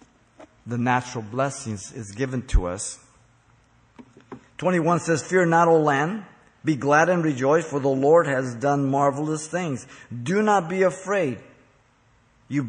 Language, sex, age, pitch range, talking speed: English, male, 50-69, 120-155 Hz, 135 wpm